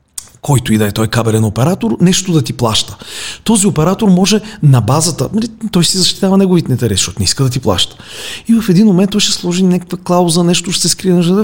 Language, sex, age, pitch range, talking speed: Bulgarian, male, 40-59, 130-195 Hz, 205 wpm